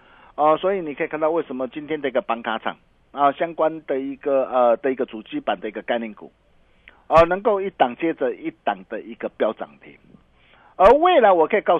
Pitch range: 135-195 Hz